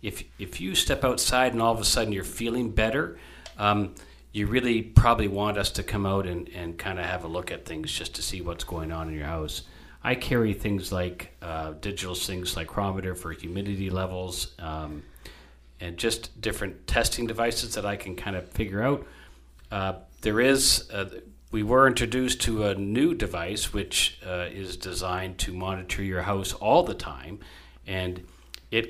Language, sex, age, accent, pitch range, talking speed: English, male, 40-59, American, 85-105 Hz, 185 wpm